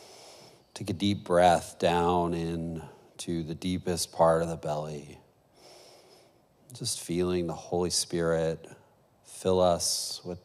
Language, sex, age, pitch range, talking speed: English, male, 40-59, 80-90 Hz, 115 wpm